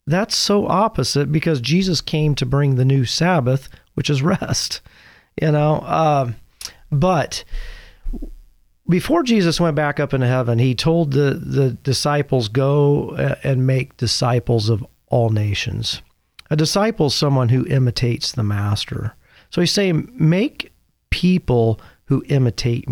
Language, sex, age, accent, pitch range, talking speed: English, male, 40-59, American, 120-155 Hz, 135 wpm